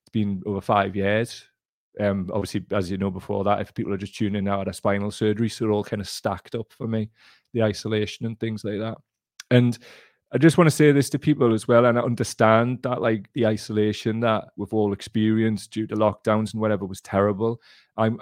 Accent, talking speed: British, 215 wpm